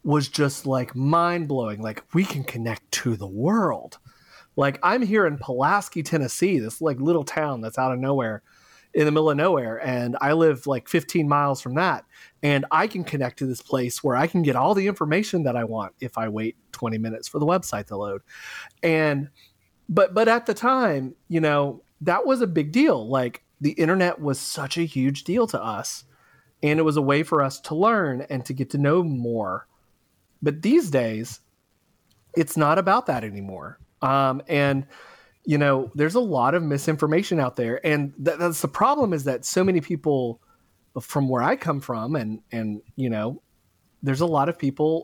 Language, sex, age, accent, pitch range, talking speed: English, male, 30-49, American, 130-170 Hz, 195 wpm